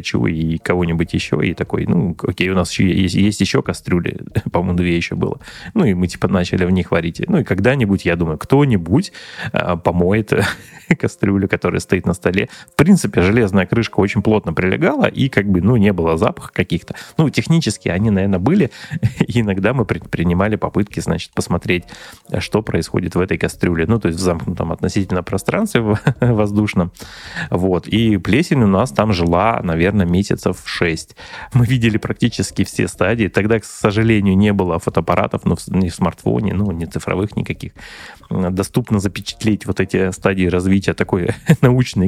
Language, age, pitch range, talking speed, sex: Russian, 20-39, 90-110 Hz, 165 wpm, male